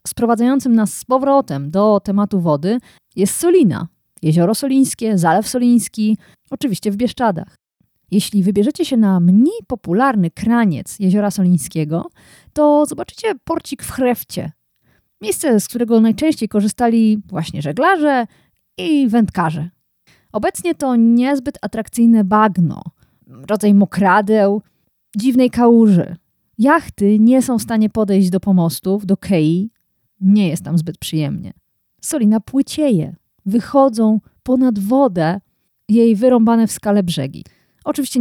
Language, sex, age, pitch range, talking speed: Polish, female, 30-49, 190-250 Hz, 115 wpm